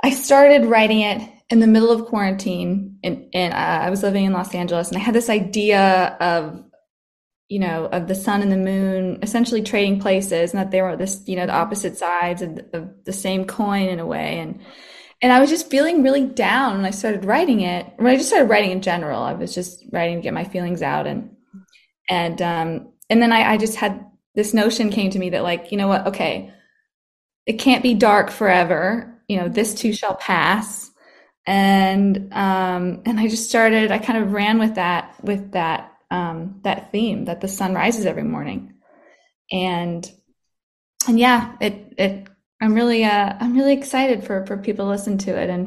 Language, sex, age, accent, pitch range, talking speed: English, female, 20-39, American, 185-225 Hz, 205 wpm